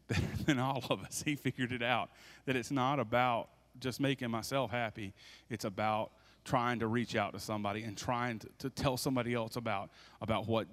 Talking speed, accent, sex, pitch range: 190 wpm, American, male, 110-145 Hz